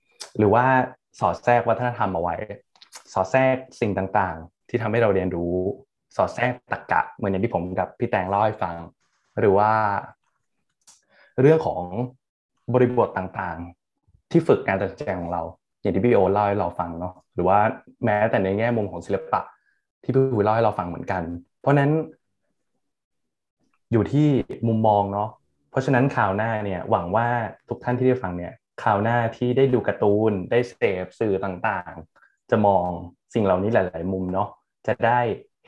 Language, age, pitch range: Thai, 20-39, 95-125 Hz